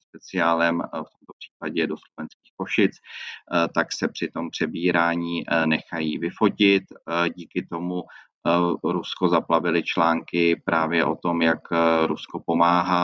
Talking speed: 115 wpm